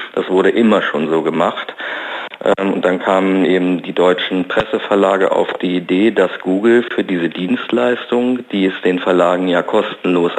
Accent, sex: German, male